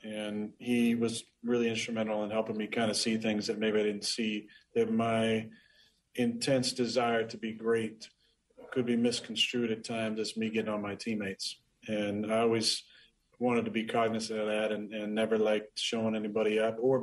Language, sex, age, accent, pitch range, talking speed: English, male, 40-59, American, 105-115 Hz, 185 wpm